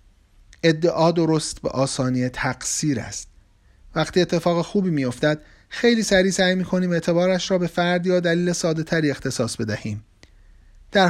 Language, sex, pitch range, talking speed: Persian, male, 105-170 Hz, 140 wpm